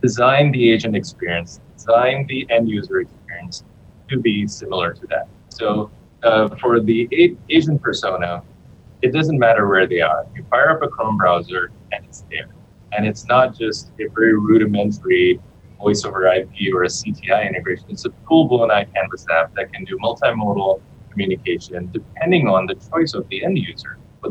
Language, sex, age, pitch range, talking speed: English, male, 20-39, 100-135 Hz, 170 wpm